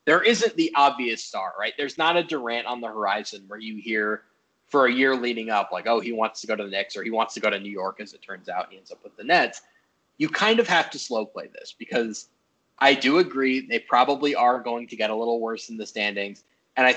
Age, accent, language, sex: 20-39, American, English, male